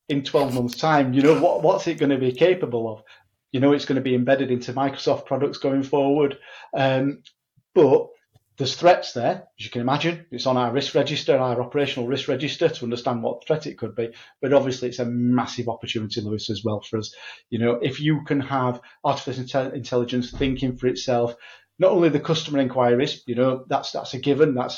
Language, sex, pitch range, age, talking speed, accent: English, male, 120-140 Hz, 40-59, 205 wpm, British